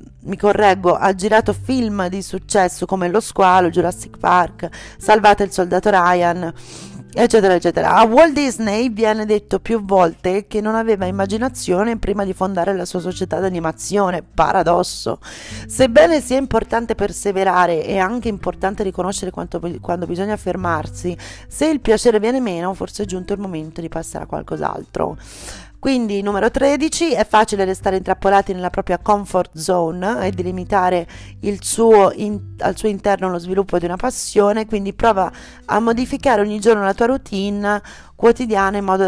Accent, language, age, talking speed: native, Italian, 30-49, 145 wpm